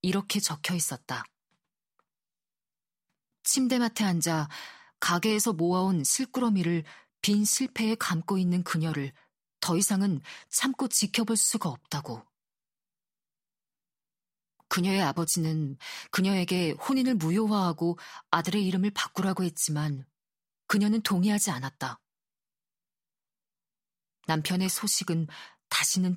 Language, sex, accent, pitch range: Korean, female, native, 160-200 Hz